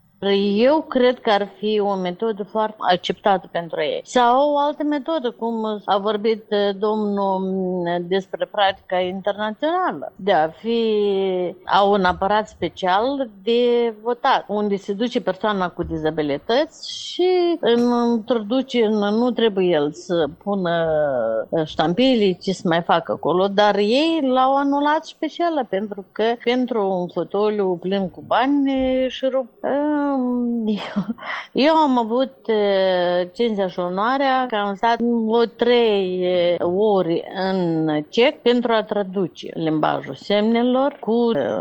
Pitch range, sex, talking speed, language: 190-250 Hz, female, 125 wpm, Romanian